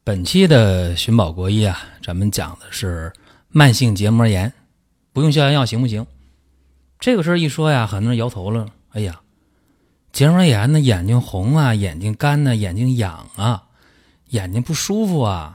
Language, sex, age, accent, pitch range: Chinese, male, 30-49, native, 95-150 Hz